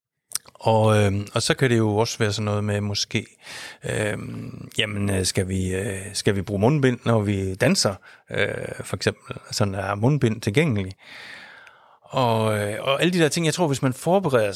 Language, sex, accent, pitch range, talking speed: Danish, male, native, 105-130 Hz, 180 wpm